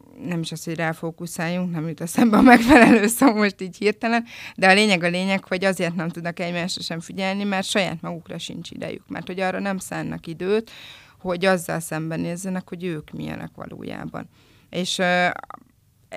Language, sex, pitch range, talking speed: Hungarian, female, 165-210 Hz, 180 wpm